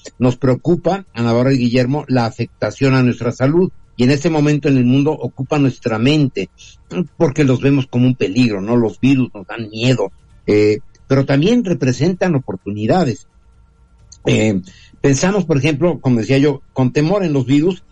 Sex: male